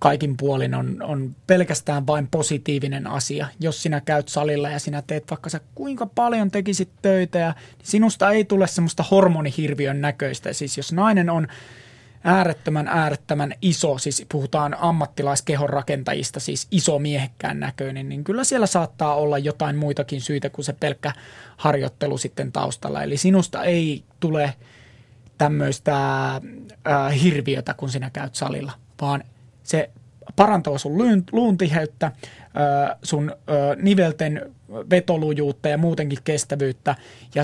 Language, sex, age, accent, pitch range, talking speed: Finnish, male, 20-39, native, 140-170 Hz, 125 wpm